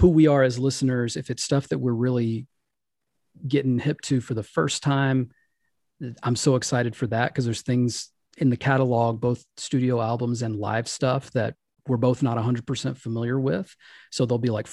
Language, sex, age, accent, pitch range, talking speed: English, male, 40-59, American, 115-135 Hz, 190 wpm